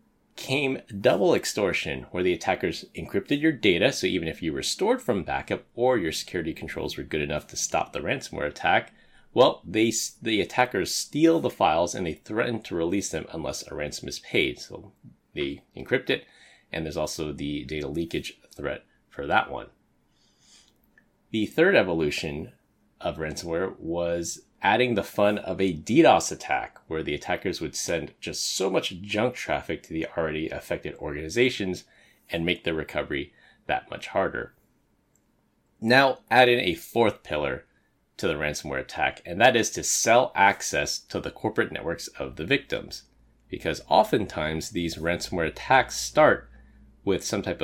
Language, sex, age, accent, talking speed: English, male, 30-49, American, 160 wpm